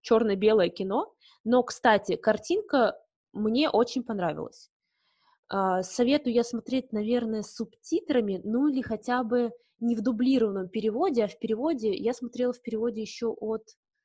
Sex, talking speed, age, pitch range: female, 130 wpm, 20-39, 210-250 Hz